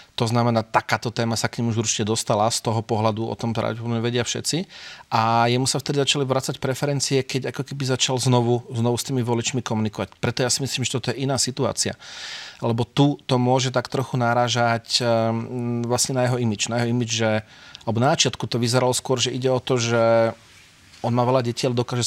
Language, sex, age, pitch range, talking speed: Slovak, male, 40-59, 115-130 Hz, 205 wpm